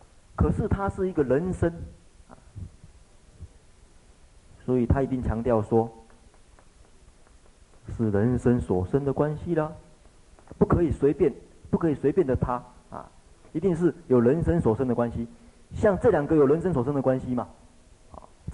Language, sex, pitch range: Chinese, male, 90-140 Hz